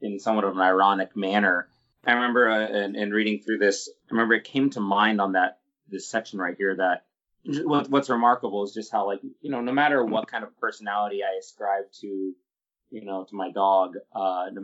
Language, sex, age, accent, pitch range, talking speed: English, male, 30-49, American, 95-110 Hz, 215 wpm